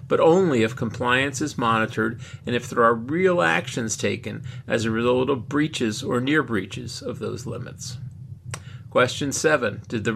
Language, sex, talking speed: English, male, 160 wpm